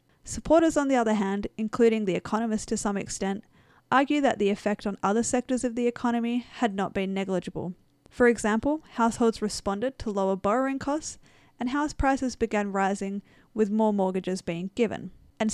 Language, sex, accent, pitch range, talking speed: English, female, Australian, 190-235 Hz, 170 wpm